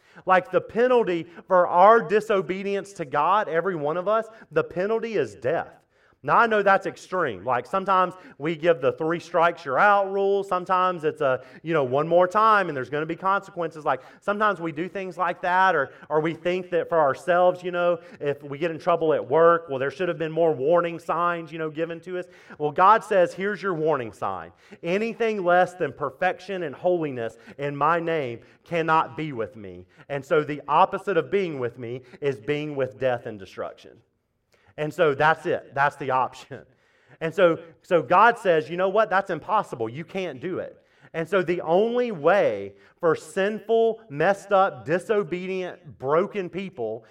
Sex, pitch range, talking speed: male, 155-195 Hz, 190 wpm